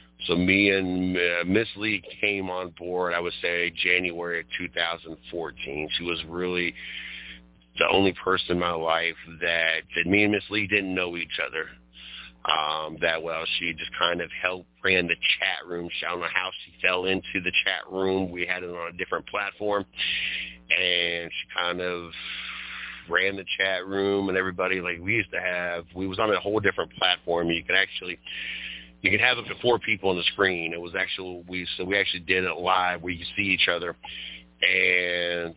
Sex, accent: male, American